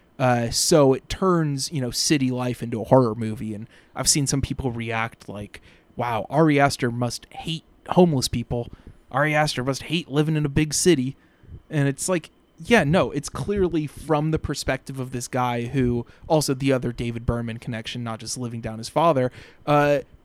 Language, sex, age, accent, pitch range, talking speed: English, male, 20-39, American, 120-150 Hz, 185 wpm